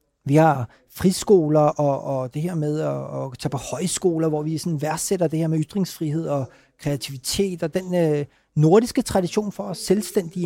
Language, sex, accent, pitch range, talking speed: Danish, male, native, 155-205 Hz, 180 wpm